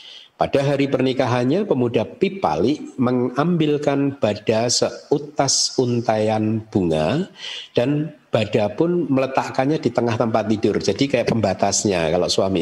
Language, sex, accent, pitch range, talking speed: Indonesian, male, native, 105-145 Hz, 110 wpm